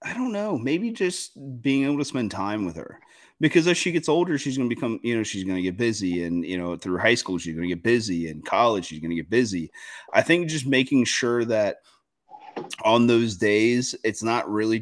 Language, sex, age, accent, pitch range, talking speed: English, male, 30-49, American, 95-120 Hz, 235 wpm